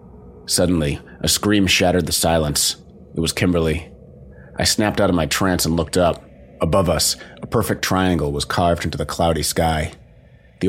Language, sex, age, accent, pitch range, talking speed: English, male, 30-49, American, 80-95 Hz, 170 wpm